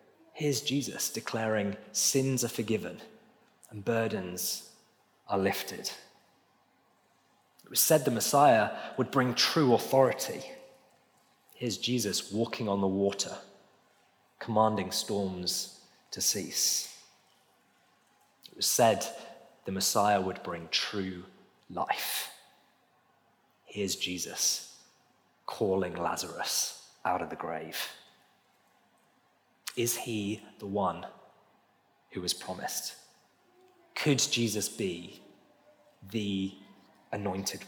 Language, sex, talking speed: English, male, 90 wpm